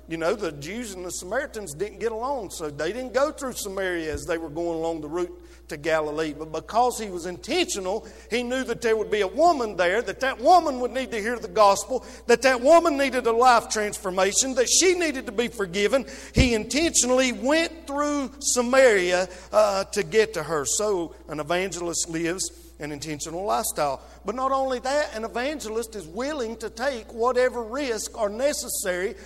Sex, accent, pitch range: male, American, 170-255 Hz